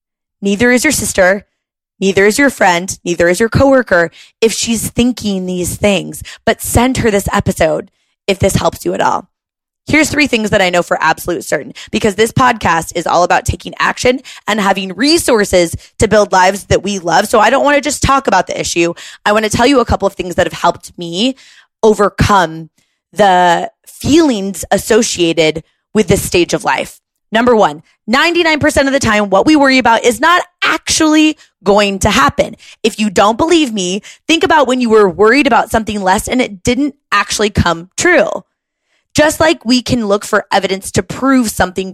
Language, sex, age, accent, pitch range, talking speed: English, female, 20-39, American, 190-255 Hz, 190 wpm